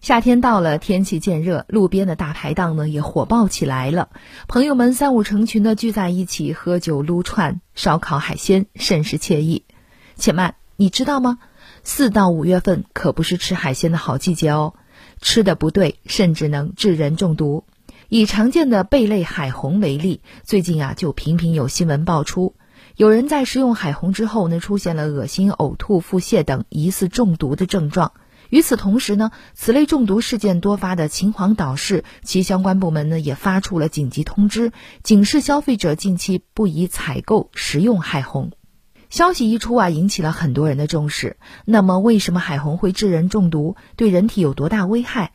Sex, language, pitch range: female, Chinese, 155-215 Hz